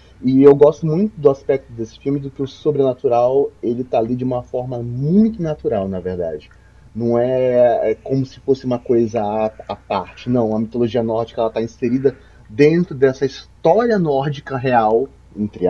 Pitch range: 110-140 Hz